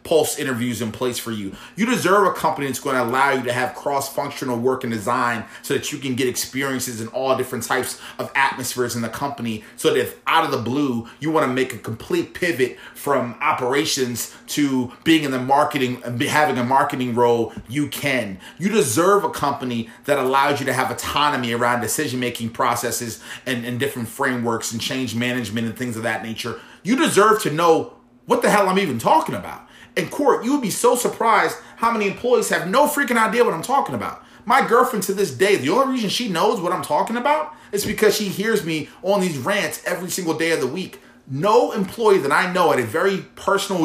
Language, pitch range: English, 125-200 Hz